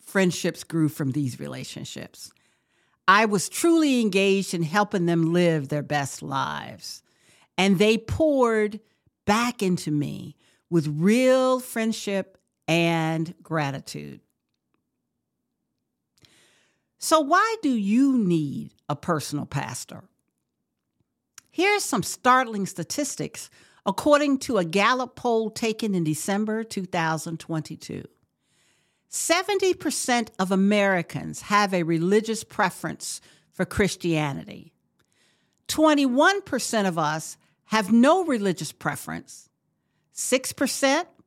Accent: American